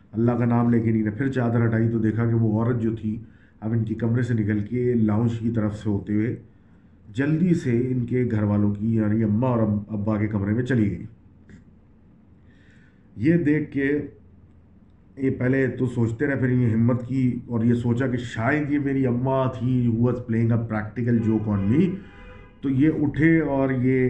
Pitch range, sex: 110-135 Hz, male